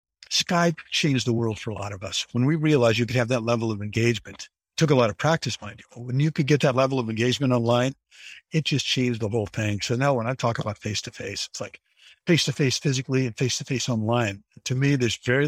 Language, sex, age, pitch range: English, male, 50-69, 115-140 Hz